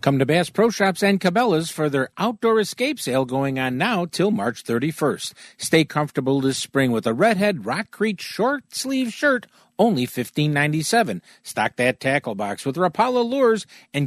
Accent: American